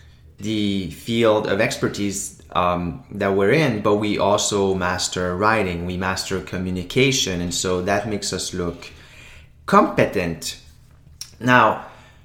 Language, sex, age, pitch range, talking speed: English, male, 30-49, 100-125 Hz, 120 wpm